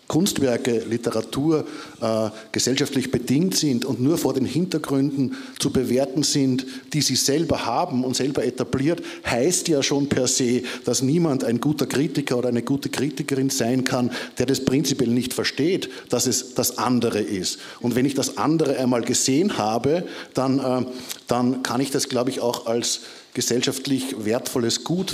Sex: male